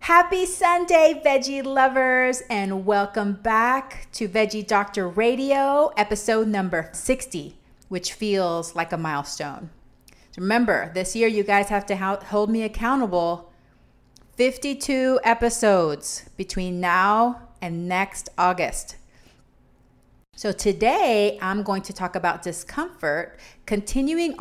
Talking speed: 110 wpm